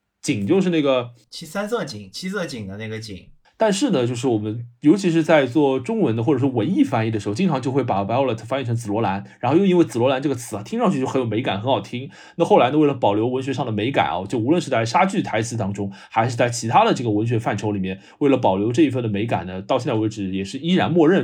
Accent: native